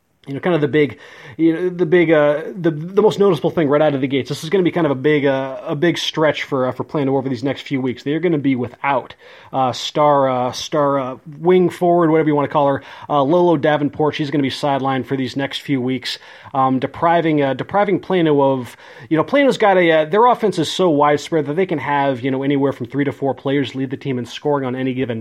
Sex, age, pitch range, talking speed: male, 30-49, 135-160 Hz, 260 wpm